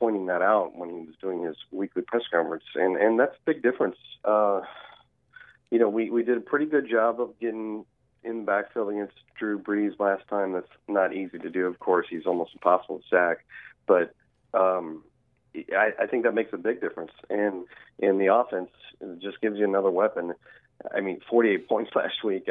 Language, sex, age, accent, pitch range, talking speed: English, male, 40-59, American, 95-115 Hz, 200 wpm